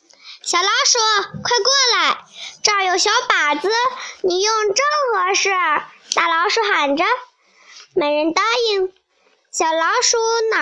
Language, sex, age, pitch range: Chinese, male, 10-29, 325-425 Hz